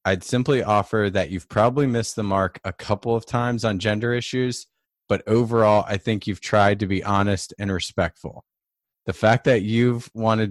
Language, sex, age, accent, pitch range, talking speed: English, male, 20-39, American, 95-110 Hz, 185 wpm